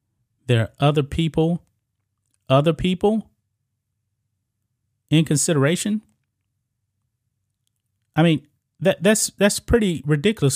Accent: American